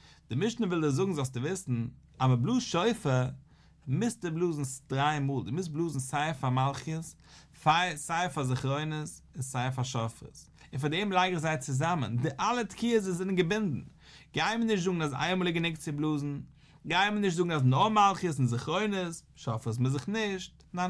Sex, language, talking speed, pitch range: male, English, 180 wpm, 130-180 Hz